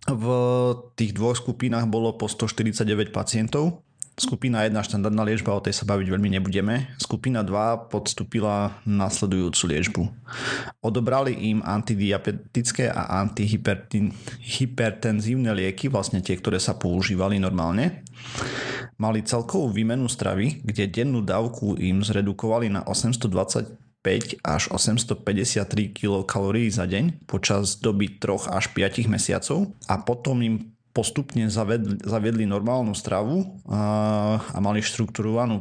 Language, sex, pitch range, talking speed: Slovak, male, 100-120 Hz, 115 wpm